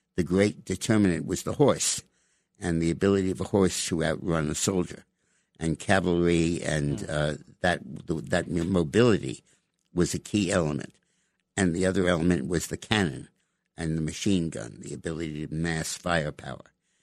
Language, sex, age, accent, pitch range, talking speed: English, male, 60-79, American, 80-95 Hz, 150 wpm